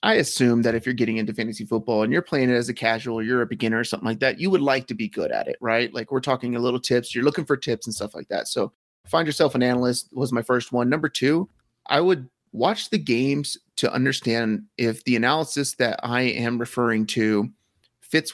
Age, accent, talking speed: 30-49, American, 240 wpm